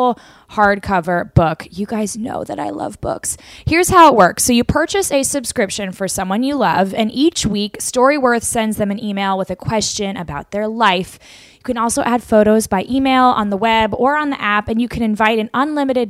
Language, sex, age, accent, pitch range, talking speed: English, female, 10-29, American, 195-245 Hz, 210 wpm